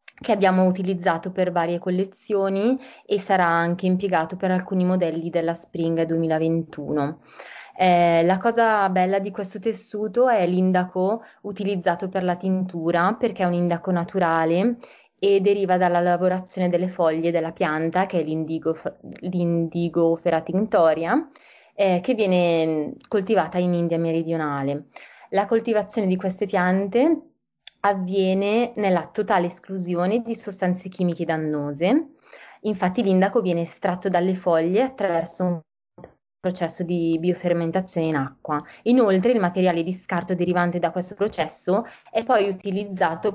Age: 20-39